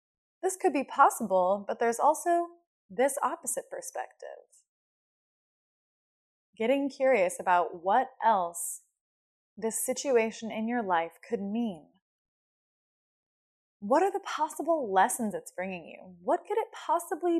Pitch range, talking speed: 205-340 Hz, 115 wpm